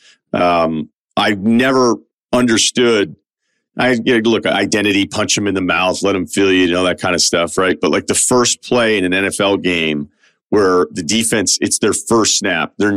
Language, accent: English, American